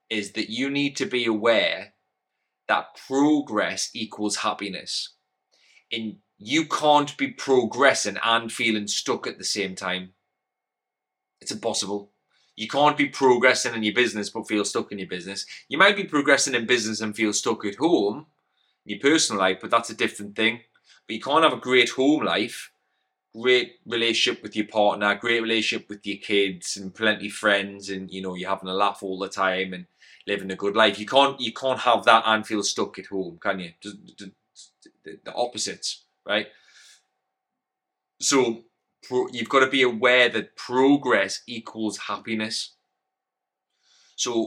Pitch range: 100-115 Hz